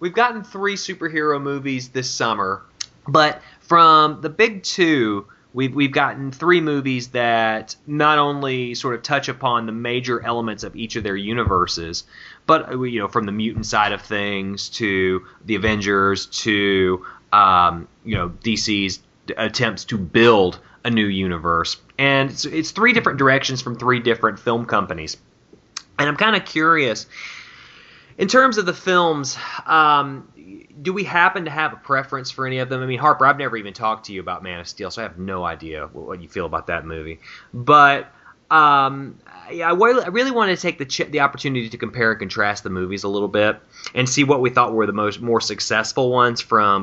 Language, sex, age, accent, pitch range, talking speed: English, male, 30-49, American, 105-150 Hz, 190 wpm